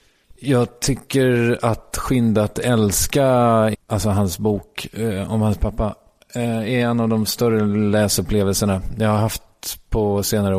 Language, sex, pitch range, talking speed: English, male, 100-120 Hz, 125 wpm